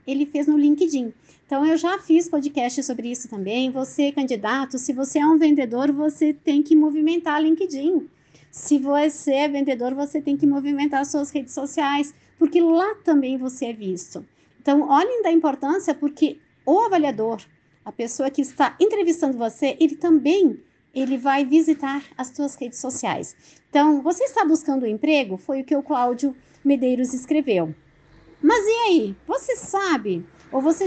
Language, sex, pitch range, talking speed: Portuguese, female, 250-310 Hz, 160 wpm